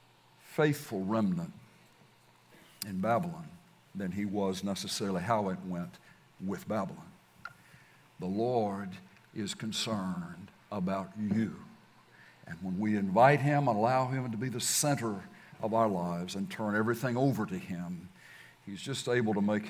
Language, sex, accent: English, male, American